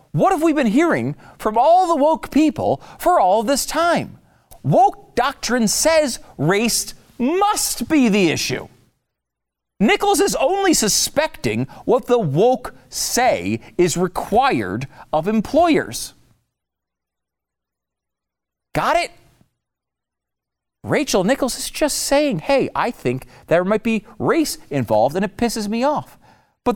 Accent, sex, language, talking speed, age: American, male, English, 125 wpm, 40-59